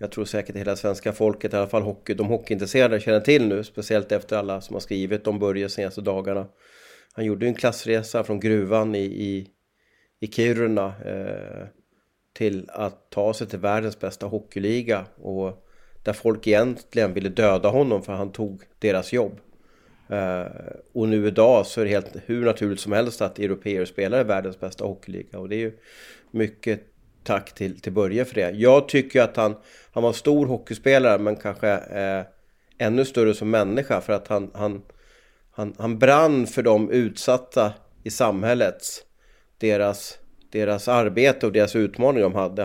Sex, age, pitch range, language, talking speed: male, 30-49, 100-115 Hz, Swedish, 175 wpm